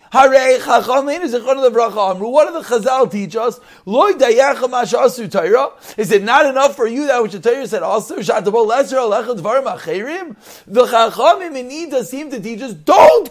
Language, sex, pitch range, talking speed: English, male, 215-280 Hz, 135 wpm